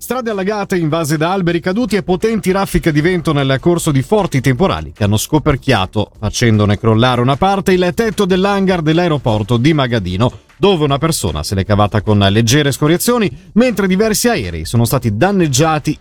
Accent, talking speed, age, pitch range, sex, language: native, 165 wpm, 40-59, 120-180 Hz, male, Italian